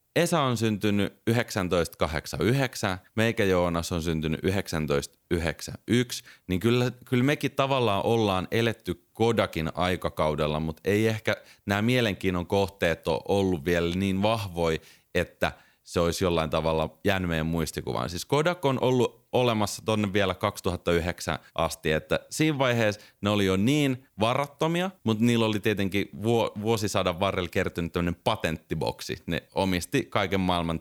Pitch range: 85-115 Hz